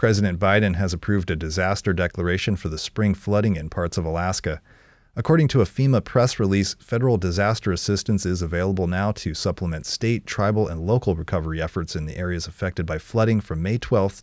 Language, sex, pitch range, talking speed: English, male, 90-110 Hz, 185 wpm